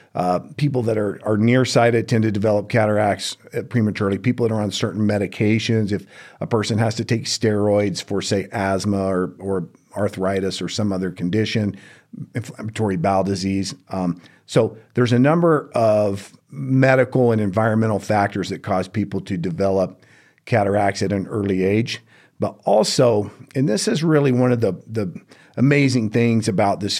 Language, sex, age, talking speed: English, male, 50-69, 160 wpm